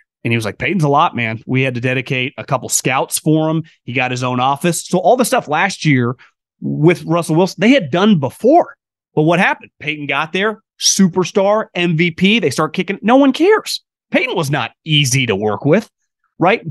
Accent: American